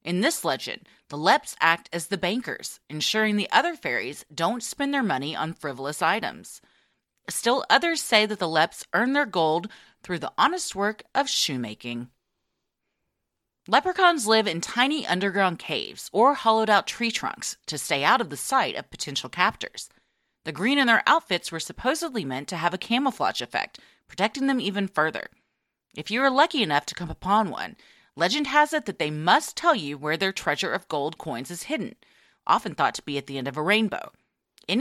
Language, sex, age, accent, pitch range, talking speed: English, female, 30-49, American, 165-270 Hz, 185 wpm